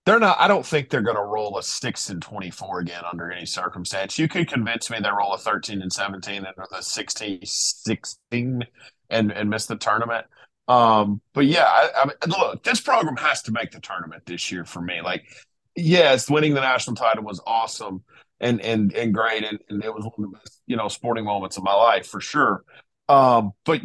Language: English